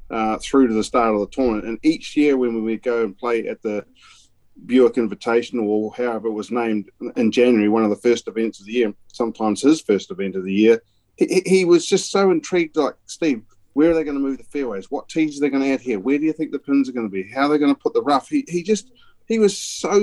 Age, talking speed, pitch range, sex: 40-59, 270 wpm, 115-165 Hz, male